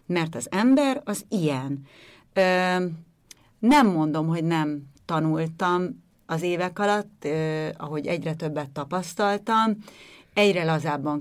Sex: female